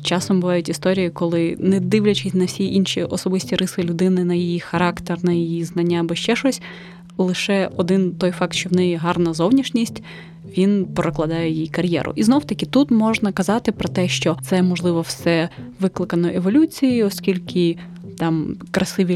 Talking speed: 160 wpm